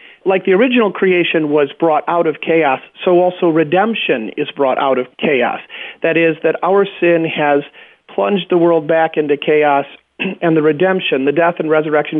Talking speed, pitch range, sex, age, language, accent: 175 wpm, 150-185 Hz, male, 40-59, English, American